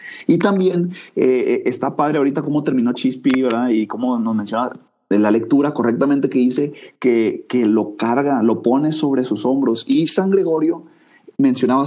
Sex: male